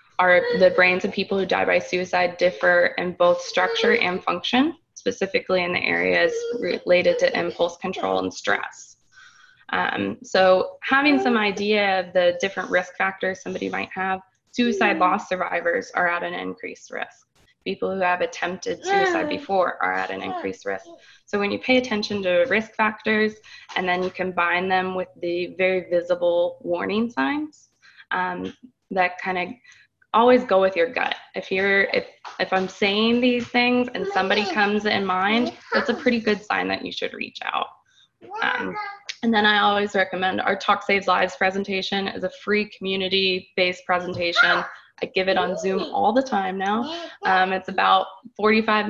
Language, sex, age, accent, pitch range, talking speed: English, female, 20-39, American, 180-235 Hz, 170 wpm